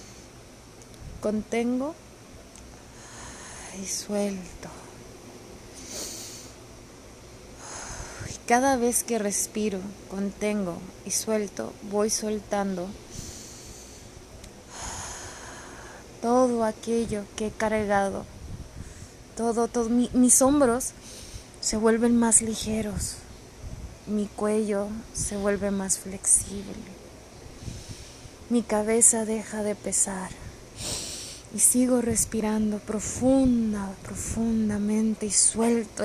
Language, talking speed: Spanish, 75 wpm